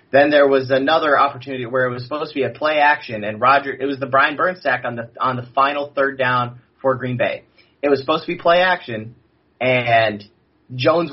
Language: English